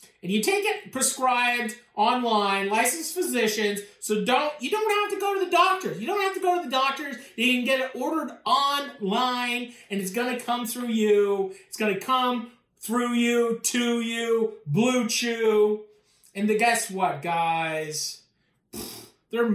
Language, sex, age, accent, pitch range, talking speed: English, male, 30-49, American, 210-275 Hz, 165 wpm